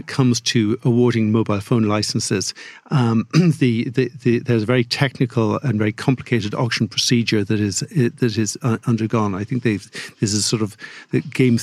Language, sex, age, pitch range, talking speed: English, male, 50-69, 110-130 Hz, 150 wpm